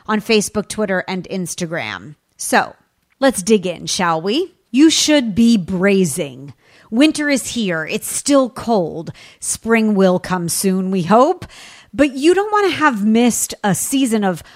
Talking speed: 155 wpm